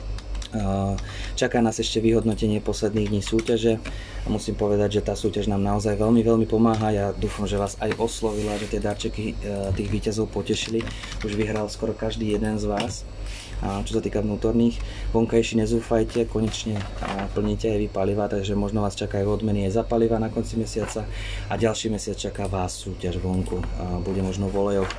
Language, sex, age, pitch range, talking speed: Slovak, male, 20-39, 100-110 Hz, 170 wpm